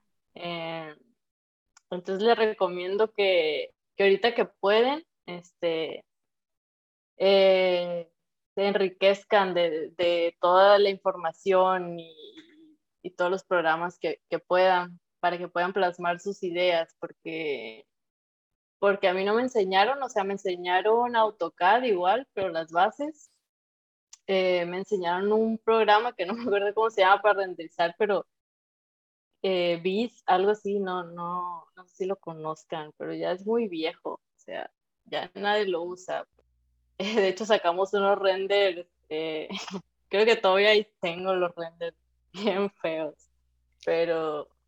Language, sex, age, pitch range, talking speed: Spanish, female, 20-39, 170-200 Hz, 135 wpm